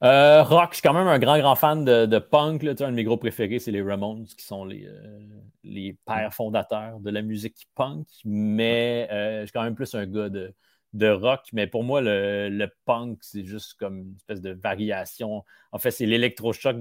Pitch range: 100-120 Hz